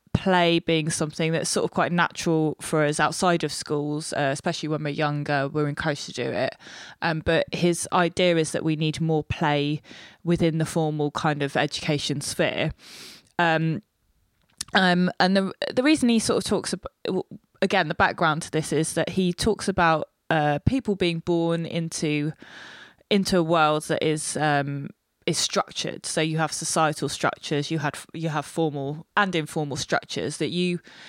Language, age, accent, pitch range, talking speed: English, 20-39, British, 150-175 Hz, 170 wpm